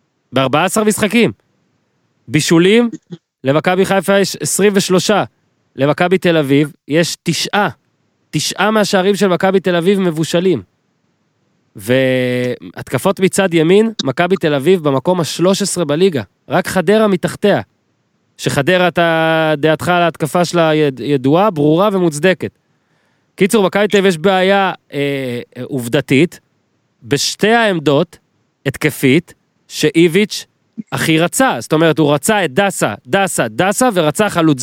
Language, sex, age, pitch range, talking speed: Hebrew, male, 30-49, 145-195 Hz, 115 wpm